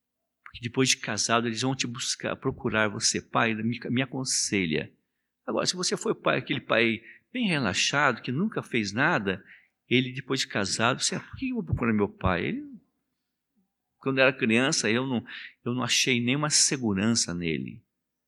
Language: Portuguese